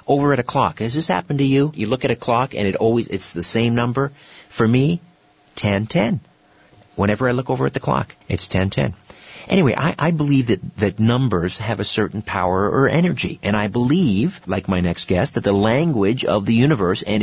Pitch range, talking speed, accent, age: 105-145 Hz, 215 wpm, American, 50-69